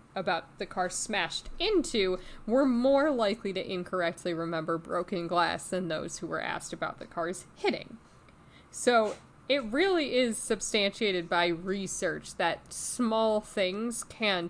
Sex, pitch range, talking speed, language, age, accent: female, 175-205 Hz, 135 wpm, English, 20-39, American